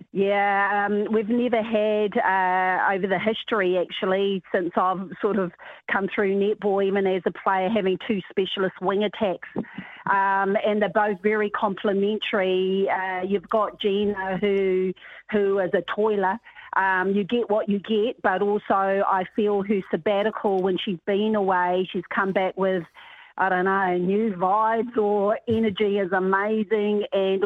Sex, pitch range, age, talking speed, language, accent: female, 195-215 Hz, 40-59, 155 wpm, English, Australian